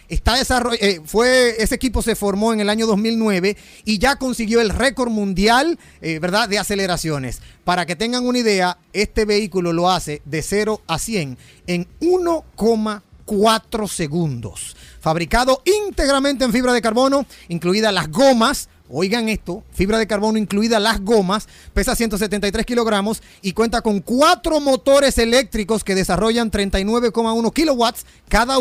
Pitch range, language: 185-235 Hz, Spanish